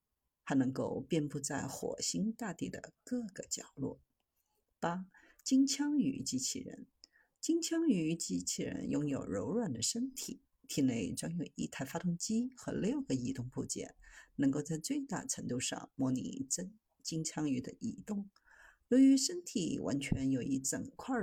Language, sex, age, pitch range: Chinese, female, 50-69, 160-265 Hz